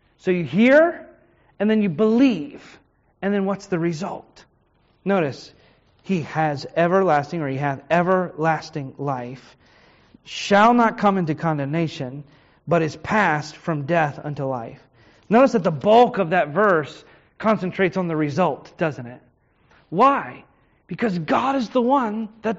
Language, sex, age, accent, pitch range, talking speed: English, male, 30-49, American, 165-240 Hz, 140 wpm